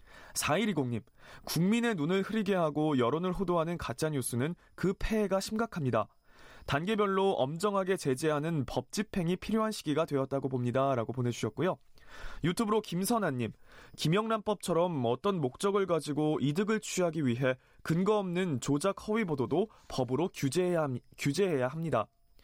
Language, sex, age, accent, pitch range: Korean, male, 20-39, native, 135-200 Hz